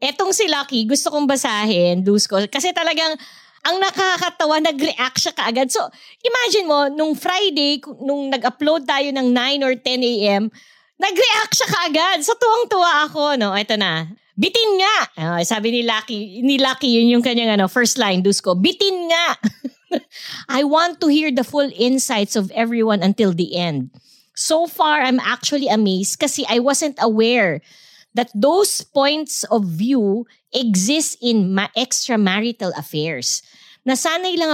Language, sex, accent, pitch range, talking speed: English, female, Filipino, 205-300 Hz, 150 wpm